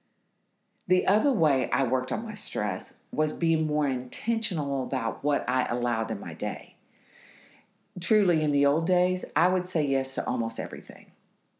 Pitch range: 155-205 Hz